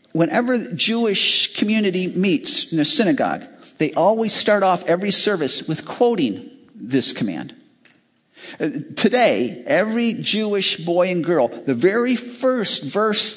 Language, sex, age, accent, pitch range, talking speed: English, male, 50-69, American, 170-235 Hz, 130 wpm